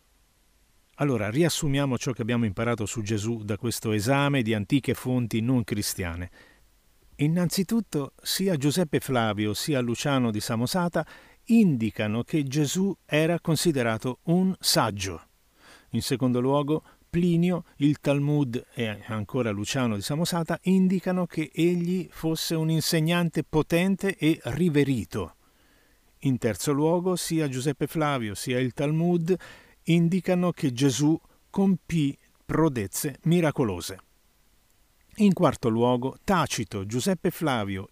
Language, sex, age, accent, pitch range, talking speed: Italian, male, 50-69, native, 120-165 Hz, 115 wpm